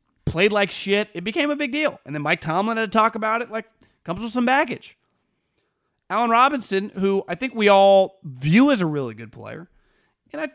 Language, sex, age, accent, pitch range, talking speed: English, male, 30-49, American, 180-260 Hz, 210 wpm